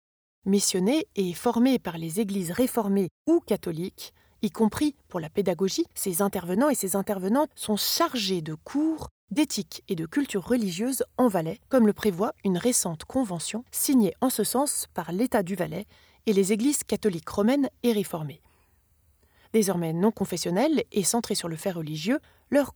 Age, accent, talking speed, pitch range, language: 20-39, French, 160 wpm, 185-255 Hz, French